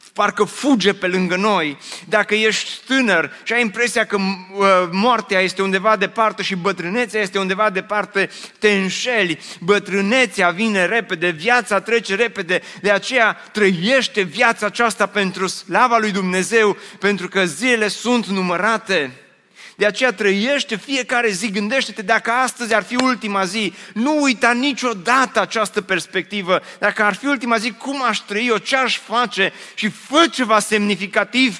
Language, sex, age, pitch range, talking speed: Romanian, male, 30-49, 195-235 Hz, 145 wpm